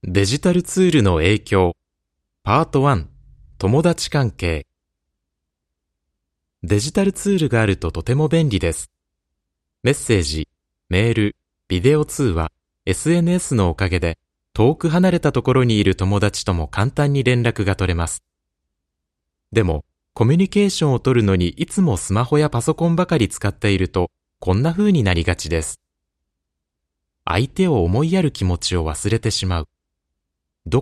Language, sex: Japanese, male